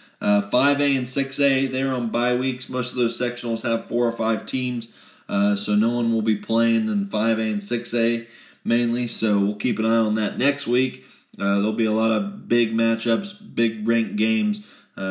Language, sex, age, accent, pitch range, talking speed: English, male, 20-39, American, 100-125 Hz, 200 wpm